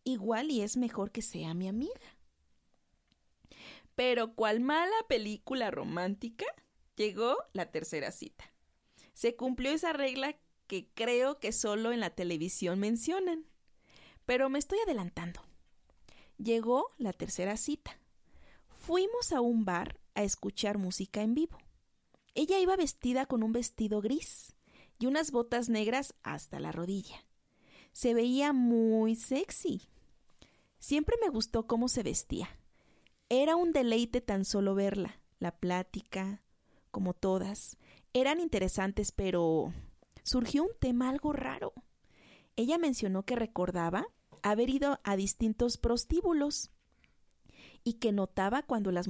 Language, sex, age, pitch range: Spanish, female, 30-49, 195-275 Hz